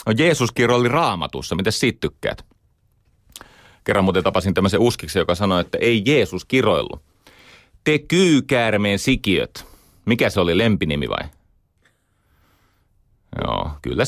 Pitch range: 90-105 Hz